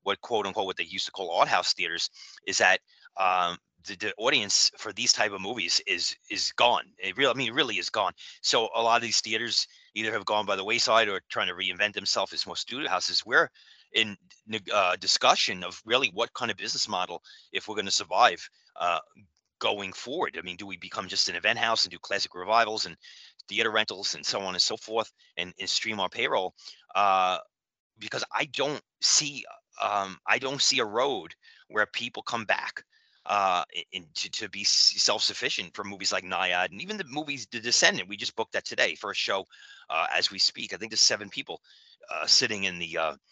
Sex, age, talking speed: male, 30-49, 210 wpm